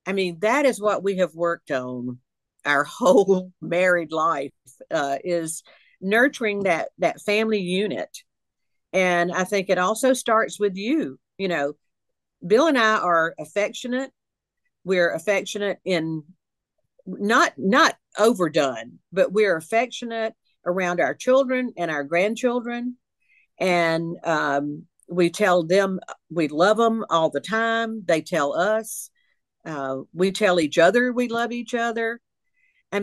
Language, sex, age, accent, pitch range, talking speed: English, female, 50-69, American, 170-230 Hz, 135 wpm